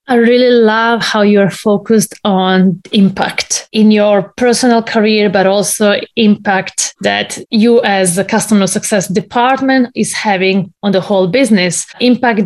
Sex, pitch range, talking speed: female, 195-245 Hz, 140 wpm